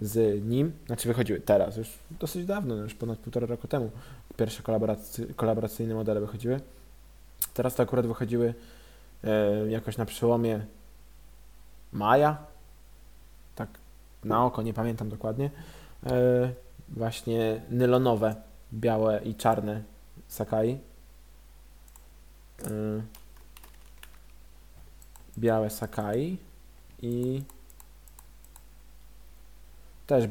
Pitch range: 110-125 Hz